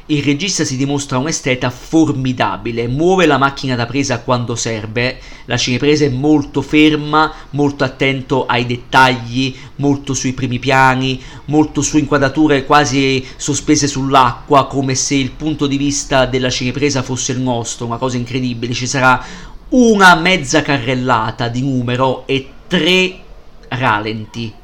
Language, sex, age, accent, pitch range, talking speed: Italian, male, 50-69, native, 130-155 Hz, 135 wpm